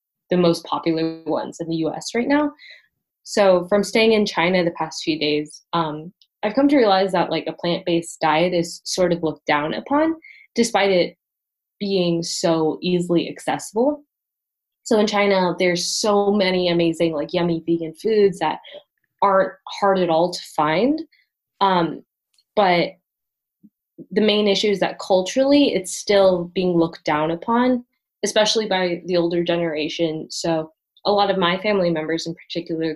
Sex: female